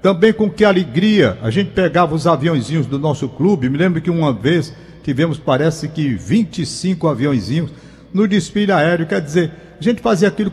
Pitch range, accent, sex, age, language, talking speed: 160-200 Hz, Brazilian, male, 60-79, Portuguese, 175 wpm